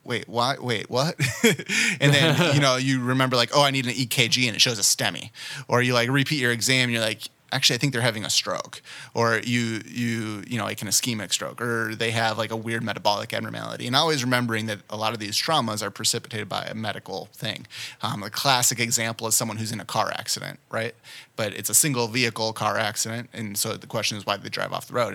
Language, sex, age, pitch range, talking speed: English, male, 30-49, 110-125 Hz, 240 wpm